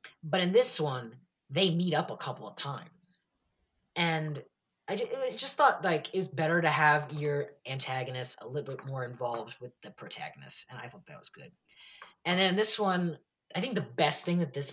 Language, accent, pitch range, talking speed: English, American, 140-170 Hz, 200 wpm